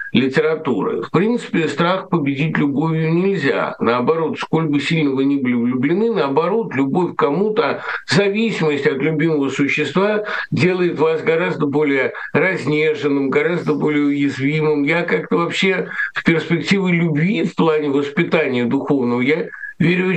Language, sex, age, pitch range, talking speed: Russian, male, 60-79, 145-210 Hz, 130 wpm